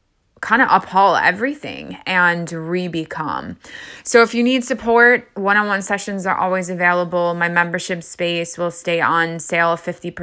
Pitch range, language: 170-185 Hz, English